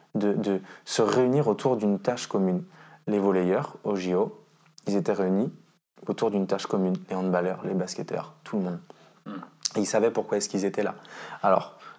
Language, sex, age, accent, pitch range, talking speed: French, male, 20-39, French, 105-150 Hz, 175 wpm